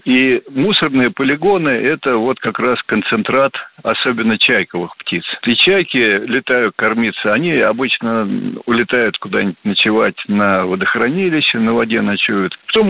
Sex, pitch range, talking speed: male, 100-135 Hz, 120 wpm